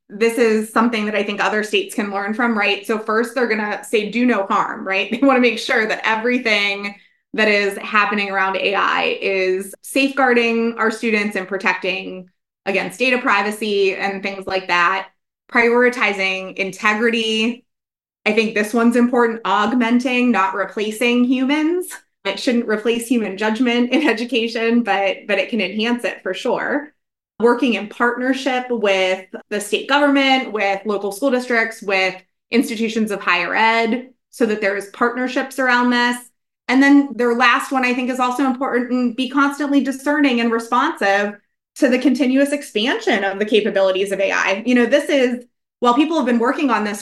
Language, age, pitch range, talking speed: English, 20-39, 200-250 Hz, 165 wpm